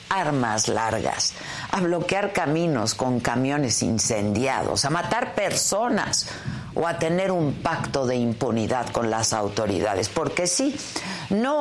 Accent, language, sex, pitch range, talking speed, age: Mexican, Spanish, female, 120-190 Hz, 125 wpm, 50-69